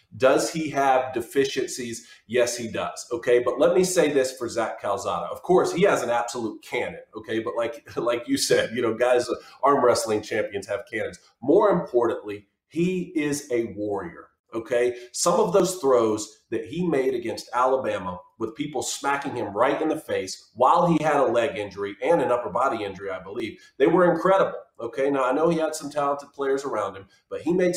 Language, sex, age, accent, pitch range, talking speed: English, male, 40-59, American, 120-170 Hz, 195 wpm